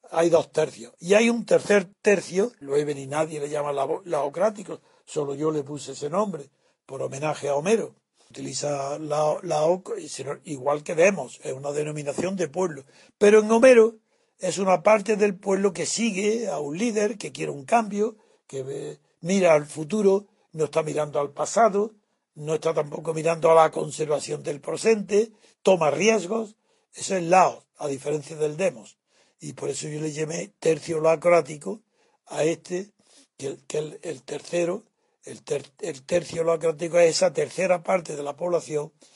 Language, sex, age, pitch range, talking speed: Spanish, male, 60-79, 150-210 Hz, 170 wpm